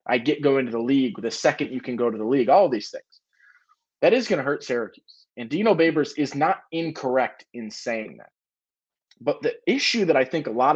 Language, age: English, 20-39